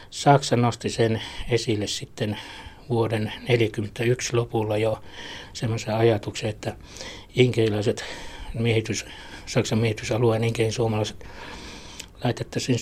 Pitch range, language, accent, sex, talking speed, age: 100-120 Hz, Finnish, native, male, 90 wpm, 60-79